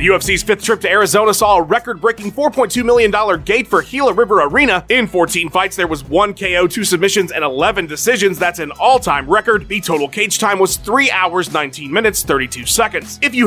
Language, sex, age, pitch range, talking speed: English, male, 30-49, 170-230 Hz, 195 wpm